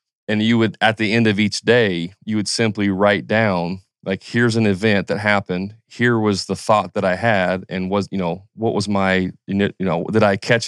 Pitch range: 95-120 Hz